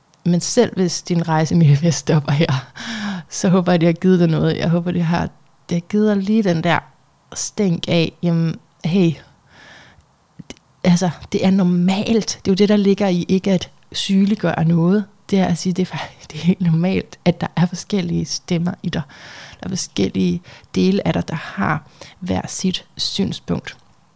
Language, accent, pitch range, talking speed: Danish, native, 165-200 Hz, 185 wpm